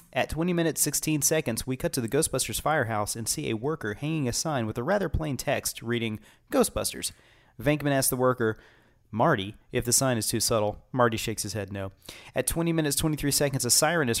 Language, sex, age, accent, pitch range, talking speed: English, male, 30-49, American, 115-140 Hz, 205 wpm